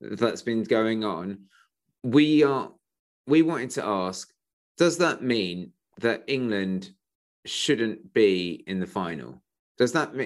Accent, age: British, 30-49